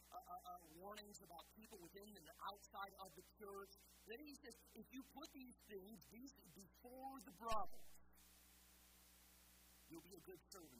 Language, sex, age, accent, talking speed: English, male, 50-69, American, 165 wpm